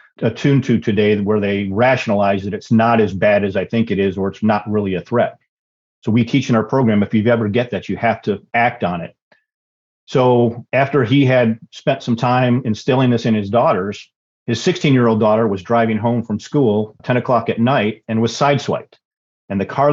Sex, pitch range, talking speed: male, 105-125 Hz, 210 wpm